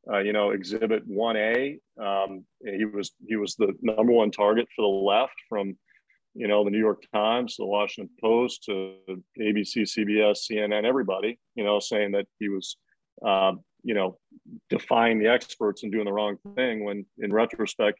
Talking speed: 175 wpm